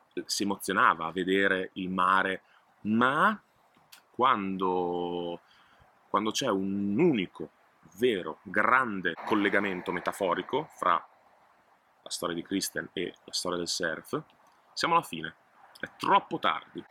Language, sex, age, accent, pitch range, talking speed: Italian, male, 30-49, native, 90-105 Hz, 115 wpm